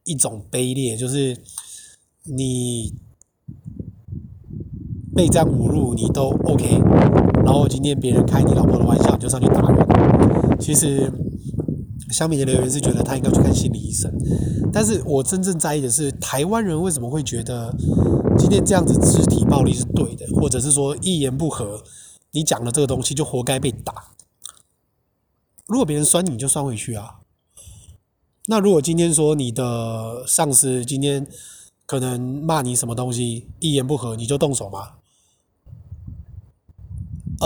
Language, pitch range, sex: Chinese, 115-150 Hz, male